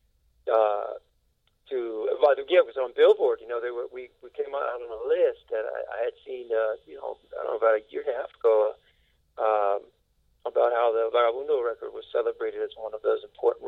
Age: 40-59